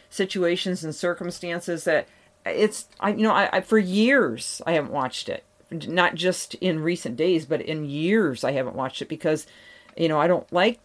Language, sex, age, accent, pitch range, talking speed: English, female, 40-59, American, 145-180 Hz, 190 wpm